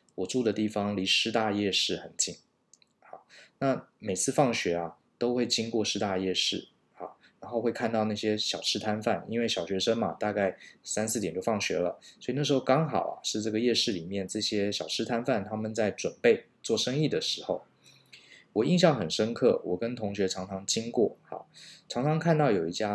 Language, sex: Chinese, male